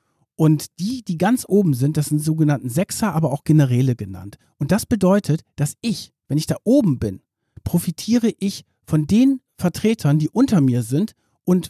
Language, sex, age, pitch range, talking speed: German, male, 50-69, 145-180 Hz, 175 wpm